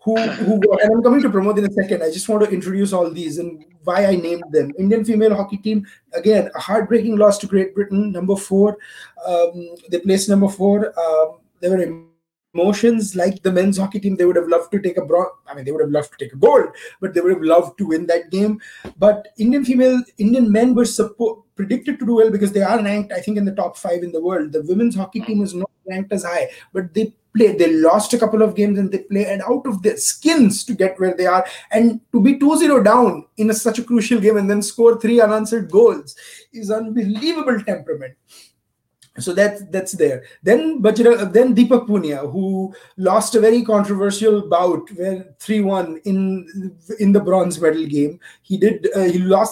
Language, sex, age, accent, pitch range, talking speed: English, male, 20-39, Indian, 185-225 Hz, 220 wpm